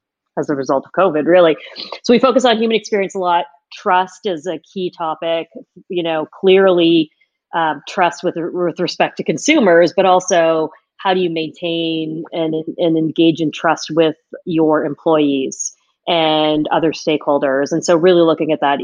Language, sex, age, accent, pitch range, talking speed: English, female, 40-59, American, 155-180 Hz, 165 wpm